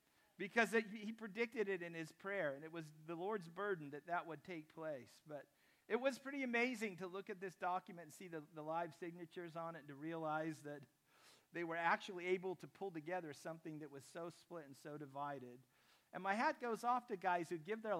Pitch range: 160-205 Hz